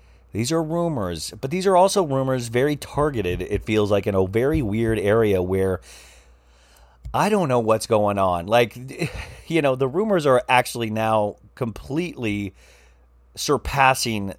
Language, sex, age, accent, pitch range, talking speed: English, male, 40-59, American, 90-125 Hz, 145 wpm